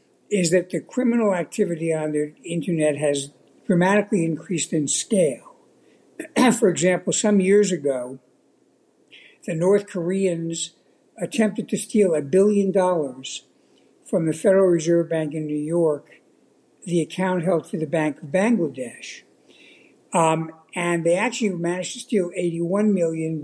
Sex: male